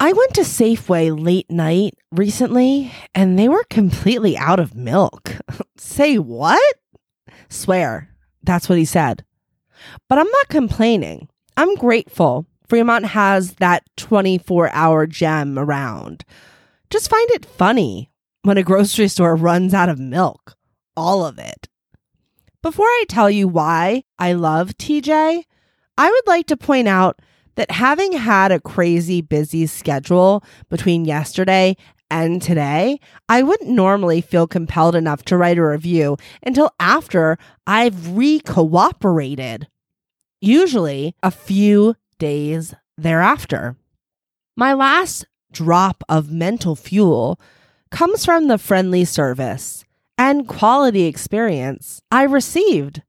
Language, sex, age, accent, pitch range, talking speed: English, female, 30-49, American, 165-235 Hz, 120 wpm